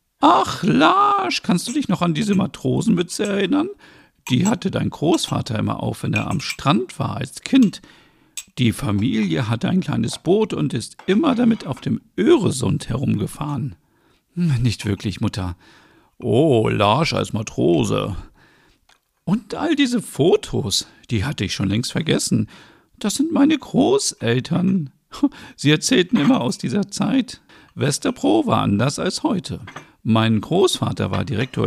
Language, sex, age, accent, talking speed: German, male, 50-69, German, 140 wpm